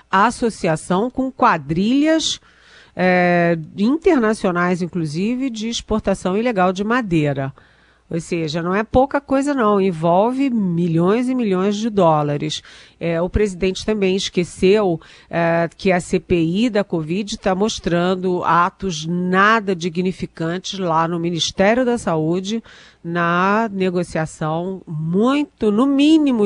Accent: Brazilian